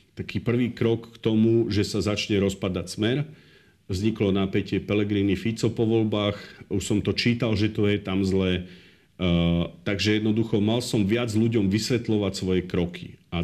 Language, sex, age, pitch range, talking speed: Slovak, male, 50-69, 95-115 Hz, 160 wpm